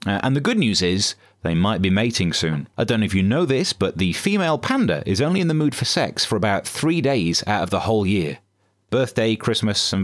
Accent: British